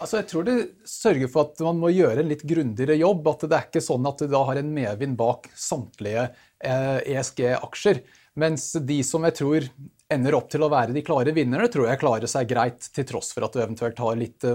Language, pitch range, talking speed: English, 125-155 Hz, 215 wpm